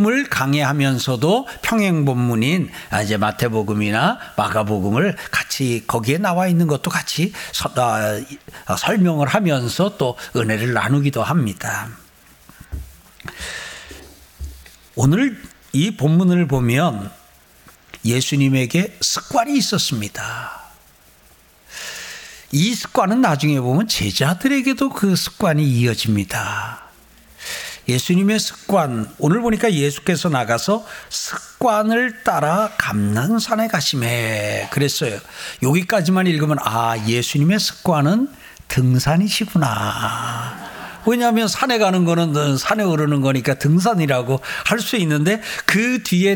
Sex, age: male, 60-79